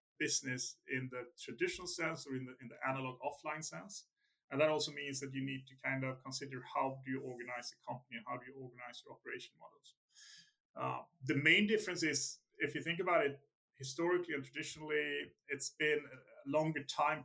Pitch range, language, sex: 130-150 Hz, English, male